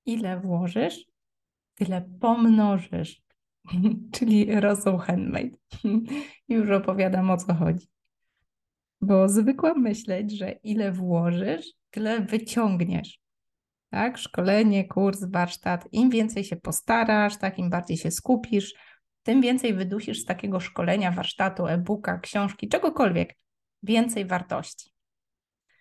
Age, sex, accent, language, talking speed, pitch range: 20-39, female, native, Polish, 100 wpm, 190-230 Hz